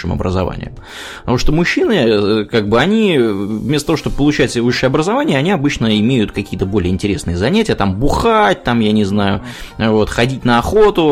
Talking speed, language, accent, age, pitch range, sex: 160 wpm, Russian, native, 20-39, 100-140 Hz, male